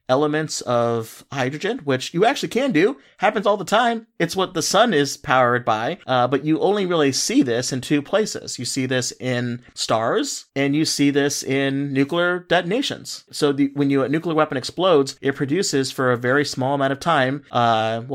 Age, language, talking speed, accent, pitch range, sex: 40-59, English, 195 wpm, American, 125-150 Hz, male